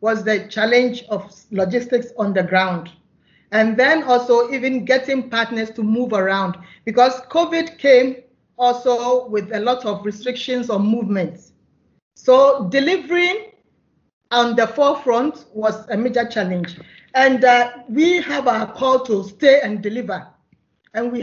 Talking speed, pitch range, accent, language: 140 wpm, 215-255 Hz, Nigerian, English